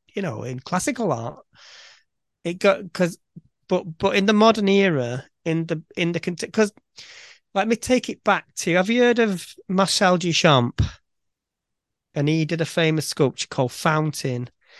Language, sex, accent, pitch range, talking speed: English, male, British, 145-190 Hz, 160 wpm